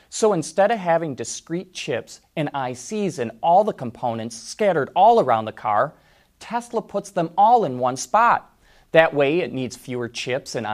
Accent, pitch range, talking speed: American, 120-185 Hz, 175 wpm